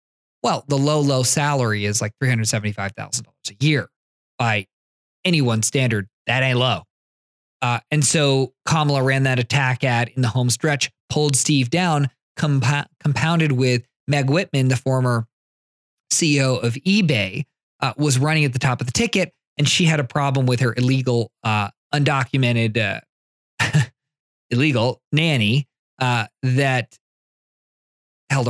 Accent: American